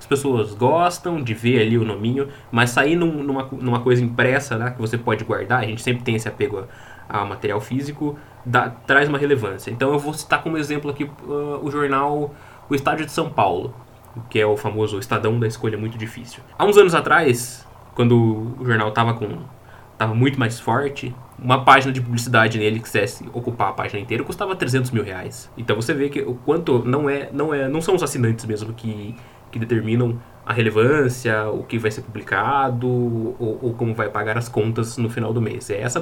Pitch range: 115-140 Hz